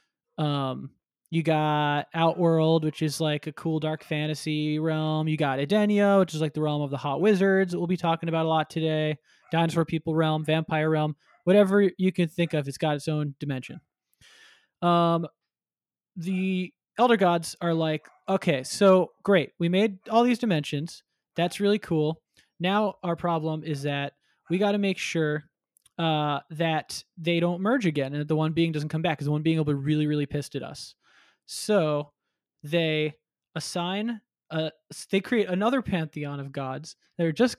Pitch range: 155-180 Hz